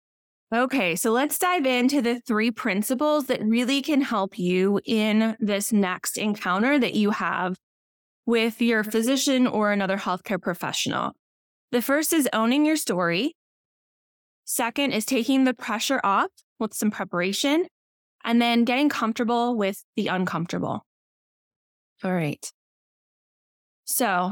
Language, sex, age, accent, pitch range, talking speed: English, female, 20-39, American, 195-255 Hz, 130 wpm